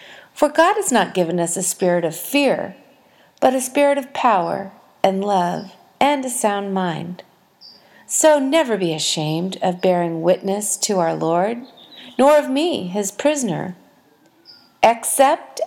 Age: 40-59